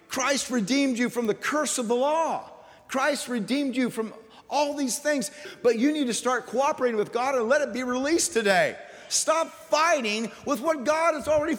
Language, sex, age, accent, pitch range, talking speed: English, male, 40-59, American, 195-265 Hz, 190 wpm